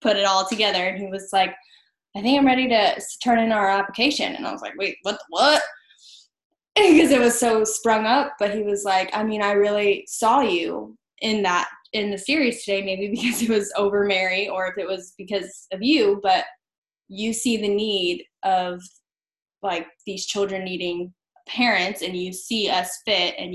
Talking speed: 195 wpm